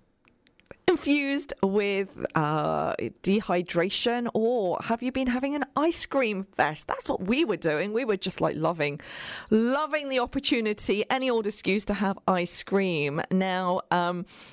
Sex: female